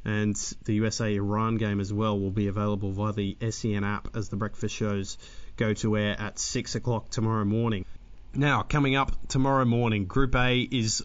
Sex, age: male, 20-39